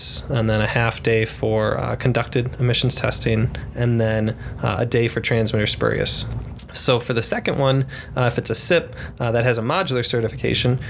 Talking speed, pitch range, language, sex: 185 wpm, 115-130 Hz, English, male